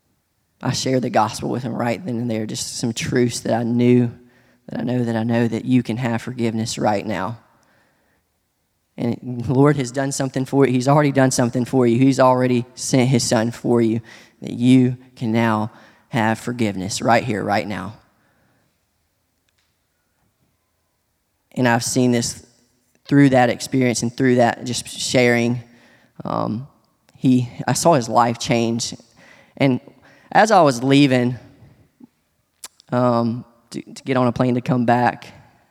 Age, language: 20-39, English